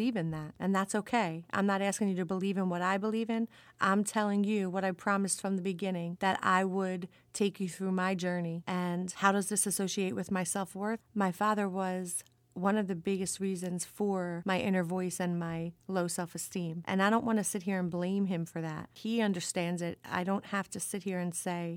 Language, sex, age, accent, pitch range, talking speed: English, female, 40-59, American, 180-200 Hz, 220 wpm